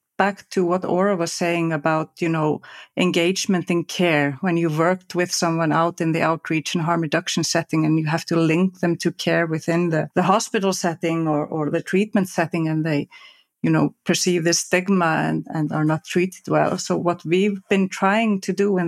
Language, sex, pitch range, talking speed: English, female, 160-185 Hz, 205 wpm